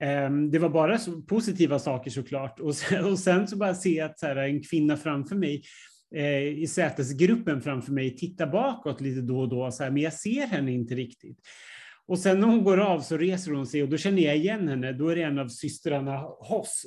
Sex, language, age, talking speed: male, Swedish, 30-49, 195 wpm